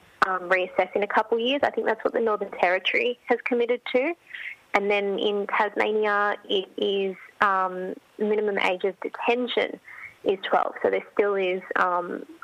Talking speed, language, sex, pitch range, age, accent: 170 wpm, English, female, 185-255 Hz, 20-39, Australian